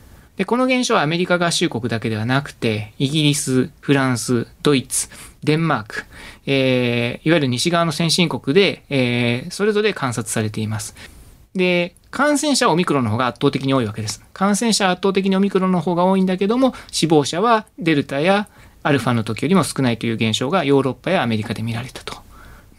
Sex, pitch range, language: male, 120-185 Hz, Japanese